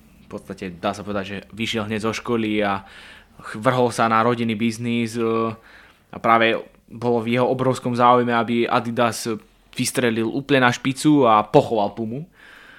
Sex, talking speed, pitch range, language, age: male, 150 wpm, 115-130 Hz, English, 20-39